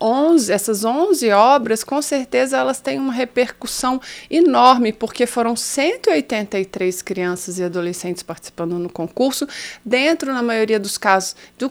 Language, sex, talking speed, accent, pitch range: Portuguese, female, 130 wpm, Brazilian, 205-270 Hz